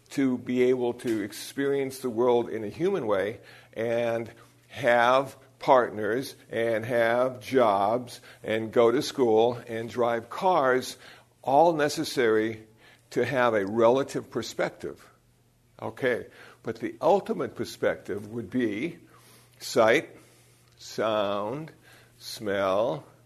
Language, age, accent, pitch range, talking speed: English, 60-79, American, 115-140 Hz, 105 wpm